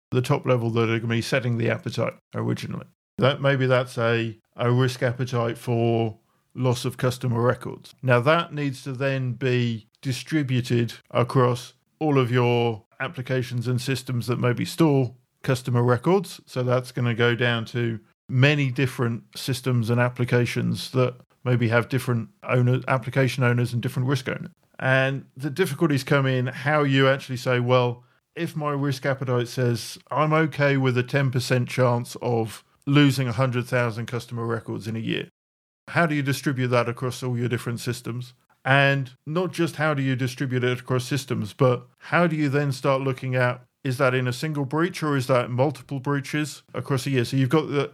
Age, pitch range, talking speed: 50-69, 120-140 Hz, 175 wpm